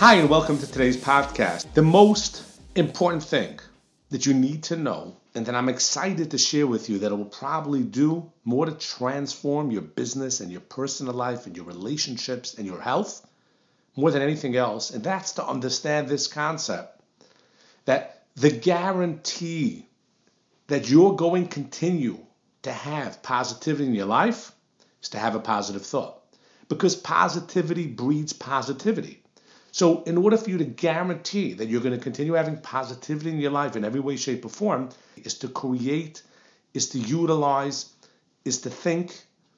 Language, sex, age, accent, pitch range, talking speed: English, male, 50-69, American, 125-165 Hz, 165 wpm